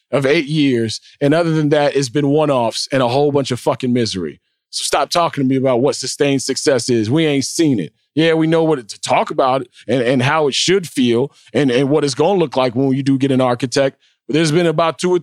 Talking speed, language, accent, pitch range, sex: 255 wpm, English, American, 140-190 Hz, male